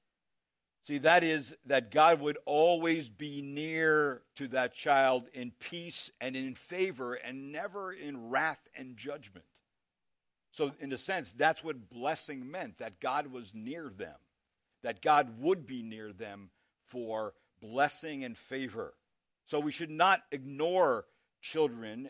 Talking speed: 140 wpm